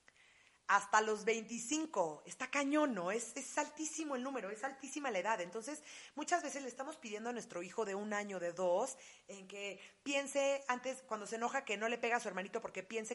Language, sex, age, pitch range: Spanish, female, 30-49, 180-255 Hz